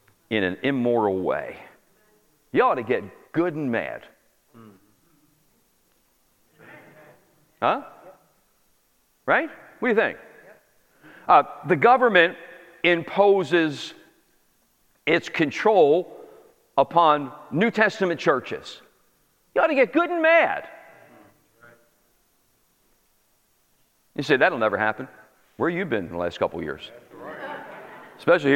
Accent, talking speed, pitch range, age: American, 105 wpm, 140-230 Hz, 50-69